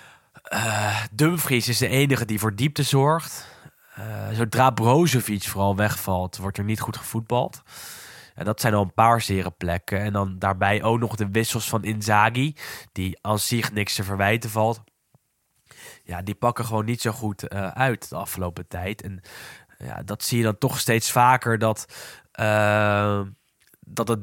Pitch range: 100-120 Hz